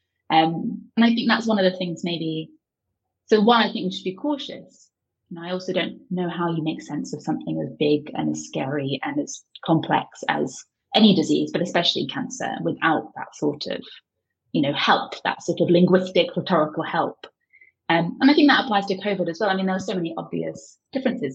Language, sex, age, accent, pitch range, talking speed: English, female, 30-49, British, 155-215 Hz, 210 wpm